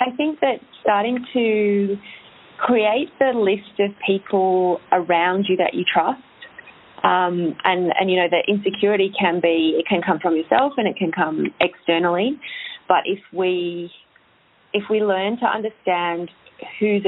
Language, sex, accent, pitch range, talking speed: English, female, Australian, 165-200 Hz, 150 wpm